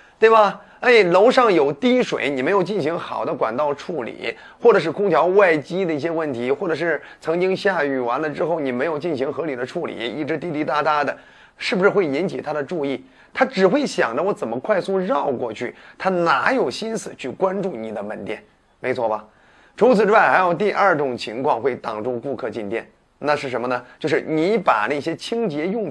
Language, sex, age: Chinese, male, 30-49